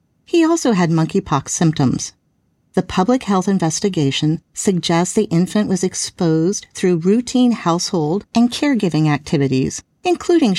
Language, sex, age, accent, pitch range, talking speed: English, female, 50-69, American, 160-225 Hz, 120 wpm